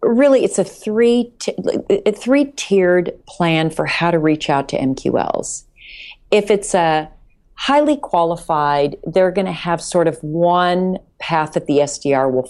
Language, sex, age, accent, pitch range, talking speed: English, female, 40-59, American, 155-220 Hz, 160 wpm